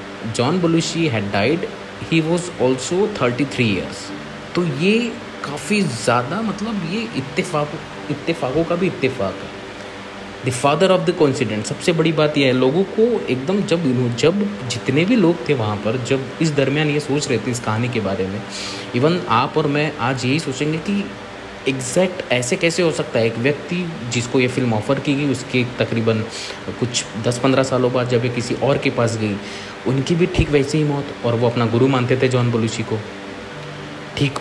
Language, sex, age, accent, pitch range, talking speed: Hindi, male, 20-39, native, 105-145 Hz, 185 wpm